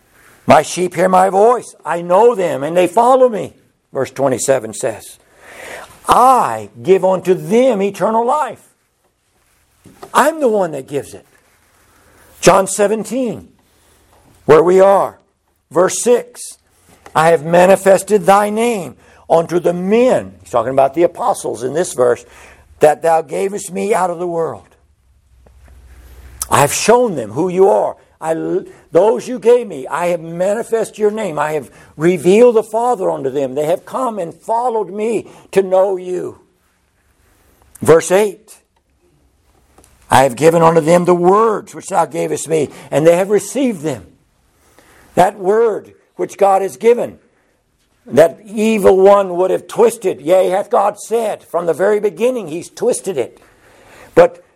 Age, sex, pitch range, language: 60-79, male, 140-220 Hz, English